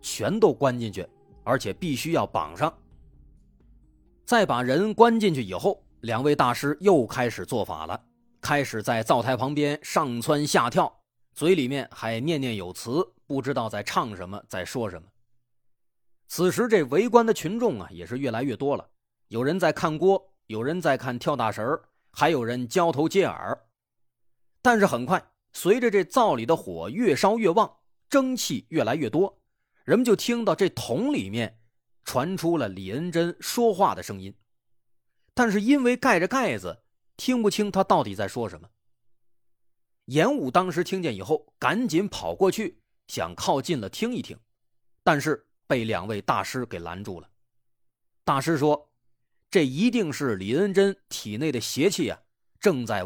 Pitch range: 115-180 Hz